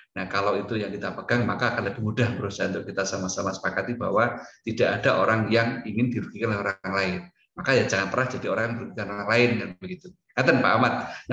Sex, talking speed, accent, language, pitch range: male, 220 wpm, native, Indonesian, 105-120 Hz